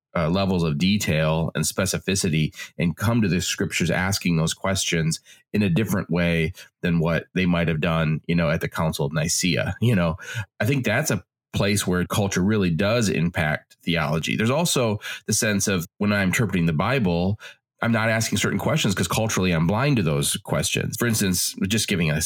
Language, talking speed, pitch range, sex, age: English, 190 wpm, 85-100 Hz, male, 30-49